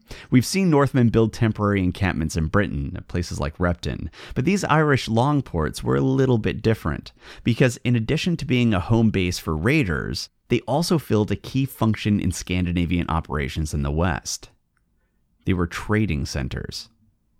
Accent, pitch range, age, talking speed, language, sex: American, 85-115 Hz, 30-49, 160 wpm, English, male